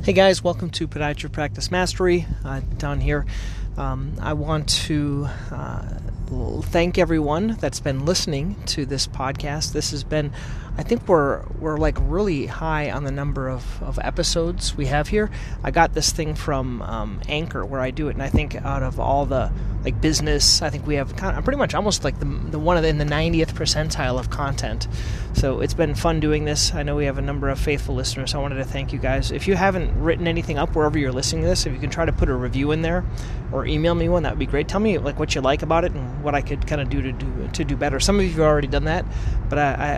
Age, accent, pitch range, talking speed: 30-49, American, 125-160 Hz, 240 wpm